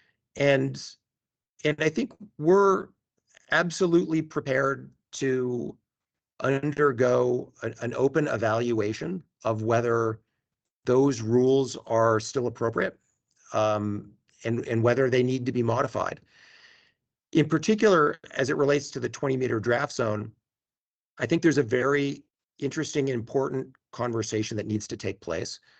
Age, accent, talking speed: 50-69, American, 125 wpm